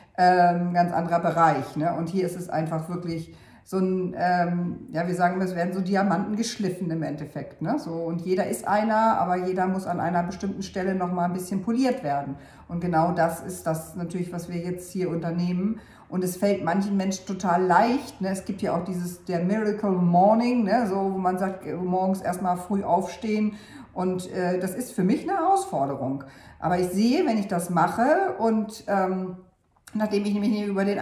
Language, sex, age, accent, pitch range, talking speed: German, female, 50-69, German, 165-200 Hz, 200 wpm